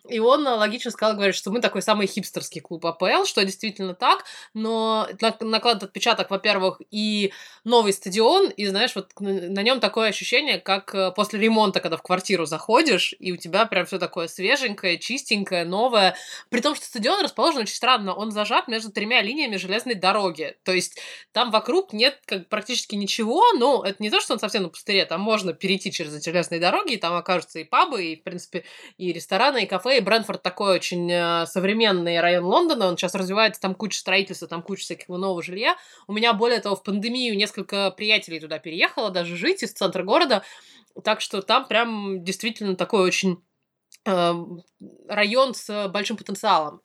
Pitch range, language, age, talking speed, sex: 185-225 Hz, Russian, 20-39, 180 wpm, female